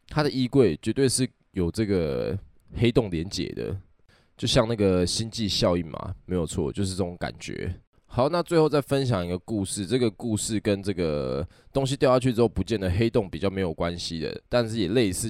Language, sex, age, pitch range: Chinese, male, 20-39, 95-140 Hz